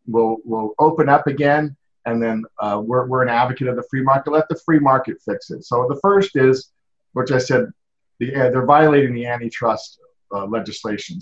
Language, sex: English, male